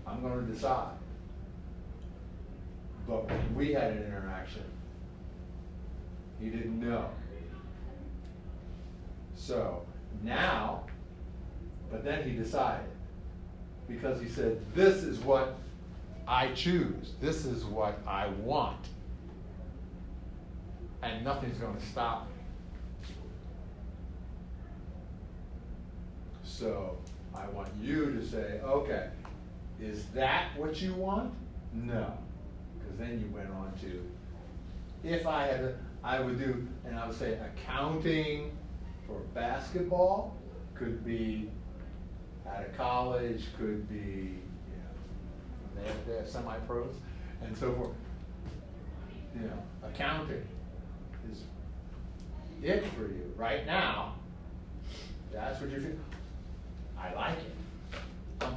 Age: 50-69